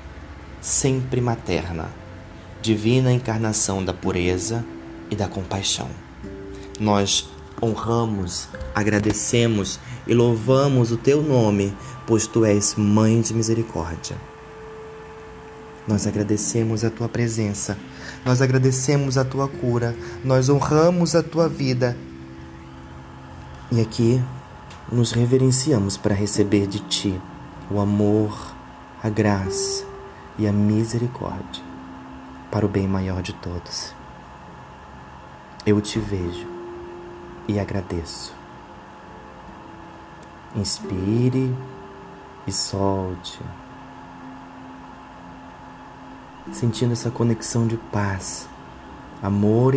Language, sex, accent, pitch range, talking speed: Portuguese, male, Brazilian, 80-120 Hz, 90 wpm